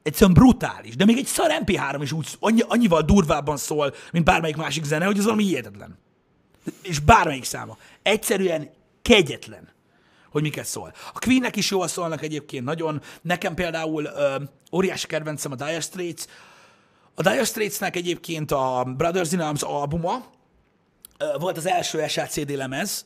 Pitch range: 145-195 Hz